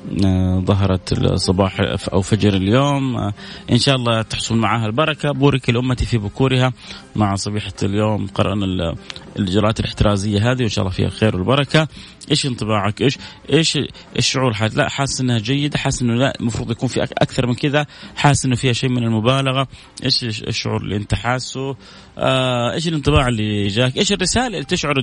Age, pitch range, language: 30-49, 105-135 Hz, Arabic